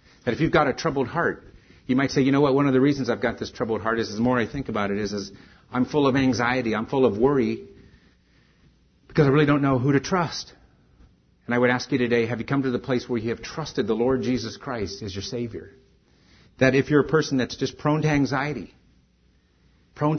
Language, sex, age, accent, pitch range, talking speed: English, male, 50-69, American, 95-125 Hz, 245 wpm